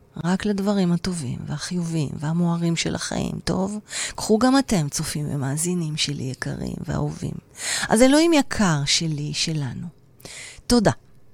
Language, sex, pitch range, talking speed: Hebrew, female, 145-180 Hz, 115 wpm